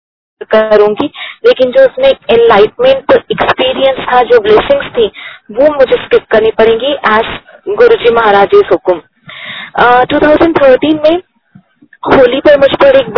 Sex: female